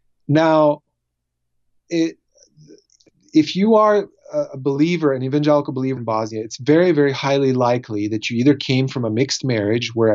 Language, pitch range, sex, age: English, 110-140 Hz, male, 30-49